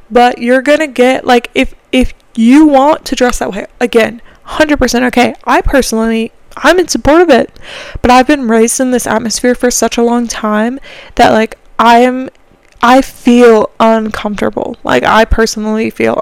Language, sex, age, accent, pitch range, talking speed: English, female, 20-39, American, 230-270 Hz, 175 wpm